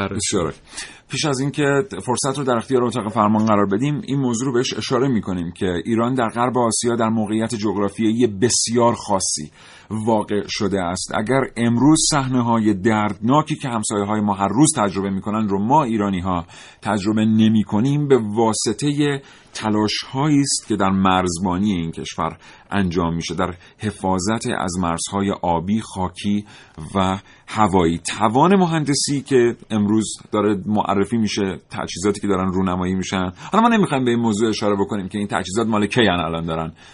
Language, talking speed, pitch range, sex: Persian, 150 wpm, 90-115 Hz, male